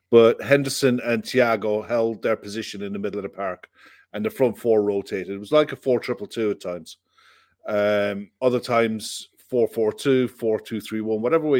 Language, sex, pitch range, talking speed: English, male, 105-130 Hz, 200 wpm